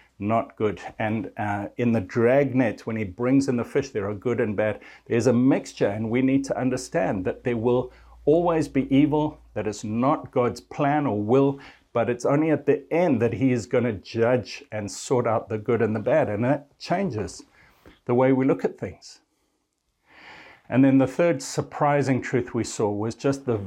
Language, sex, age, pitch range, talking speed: English, male, 60-79, 110-135 Hz, 200 wpm